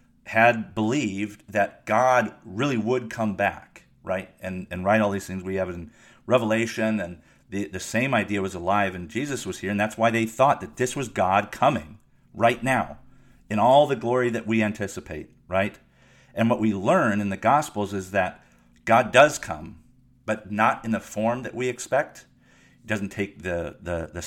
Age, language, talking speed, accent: 50-69, English, 190 wpm, American